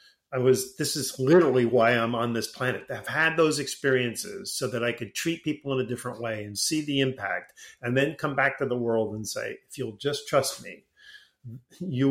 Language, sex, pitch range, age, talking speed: English, male, 115-145 Hz, 40-59, 215 wpm